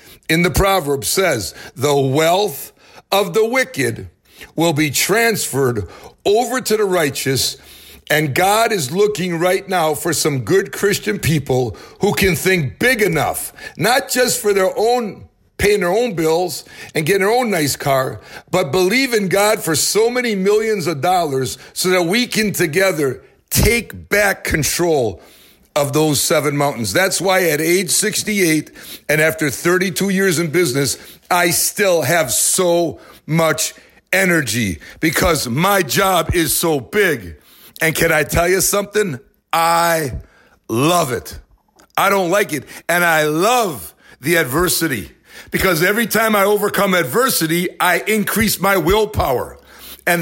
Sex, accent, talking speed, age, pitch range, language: male, American, 145 wpm, 60-79, 150-200 Hz, English